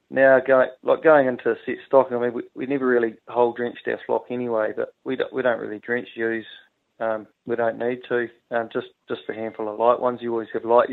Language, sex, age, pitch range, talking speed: English, male, 20-39, 115-125 Hz, 245 wpm